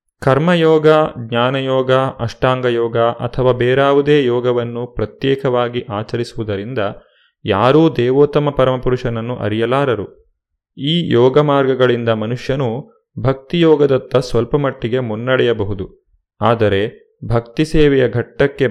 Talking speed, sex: 75 wpm, male